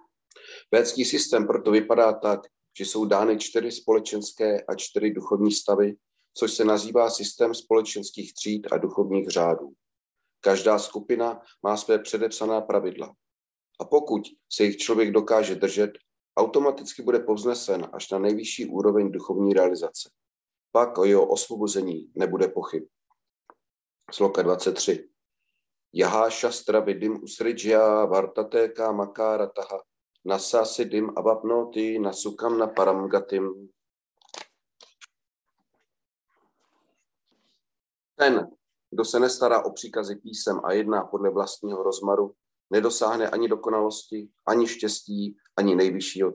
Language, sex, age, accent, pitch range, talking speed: Czech, male, 40-59, native, 100-115 Hz, 100 wpm